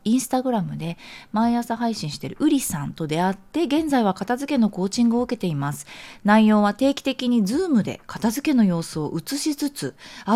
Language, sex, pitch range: Japanese, female, 165-255 Hz